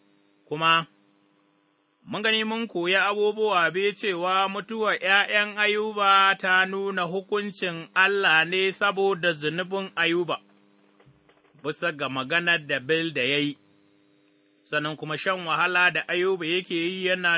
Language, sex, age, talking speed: English, male, 30-49, 120 wpm